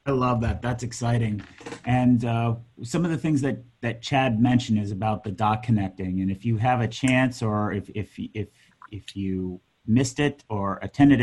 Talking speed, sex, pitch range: 190 wpm, male, 105-125 Hz